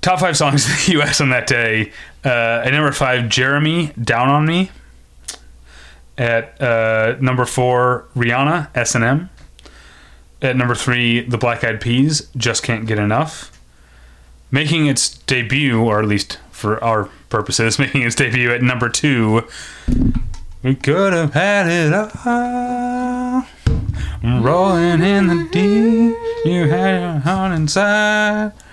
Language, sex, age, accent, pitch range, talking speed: English, male, 30-49, American, 100-145 Hz, 135 wpm